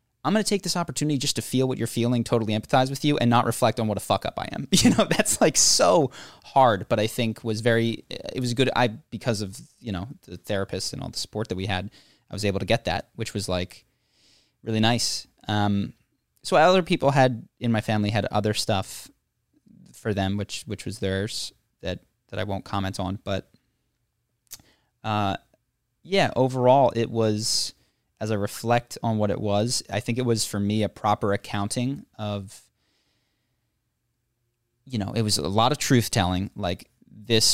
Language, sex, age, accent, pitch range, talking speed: English, male, 20-39, American, 105-125 Hz, 195 wpm